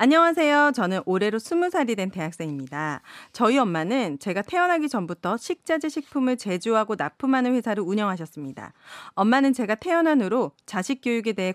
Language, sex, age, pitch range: Korean, female, 40-59, 195-285 Hz